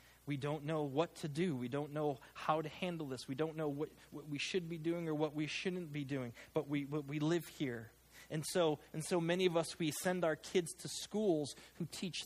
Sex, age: male, 30-49